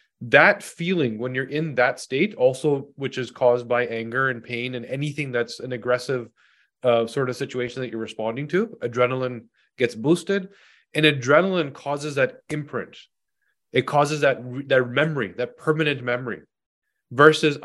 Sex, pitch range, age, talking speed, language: male, 120-145 Hz, 30-49, 155 wpm, English